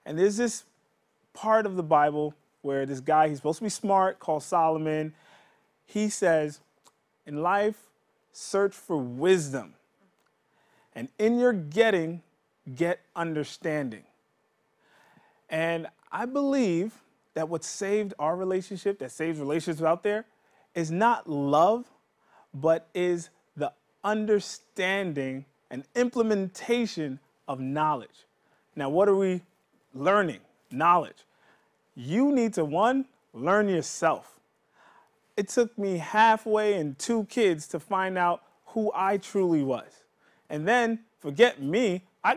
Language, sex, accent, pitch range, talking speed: English, male, American, 155-215 Hz, 120 wpm